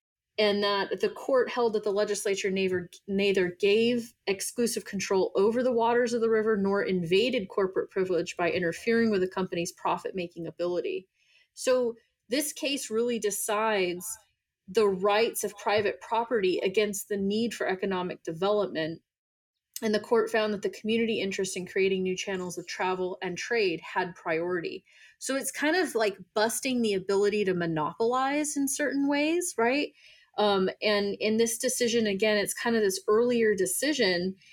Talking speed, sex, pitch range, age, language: 155 wpm, female, 190-240 Hz, 30-49, English